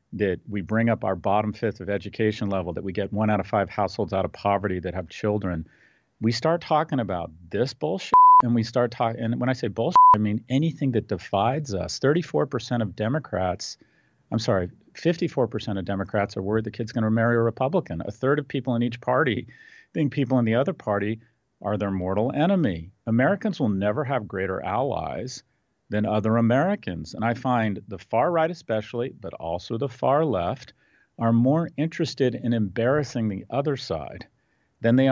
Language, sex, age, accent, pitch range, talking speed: English, male, 40-59, American, 100-130 Hz, 185 wpm